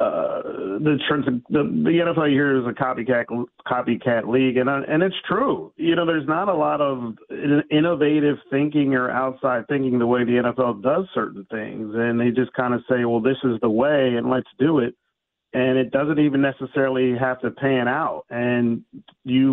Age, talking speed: 40-59, 185 wpm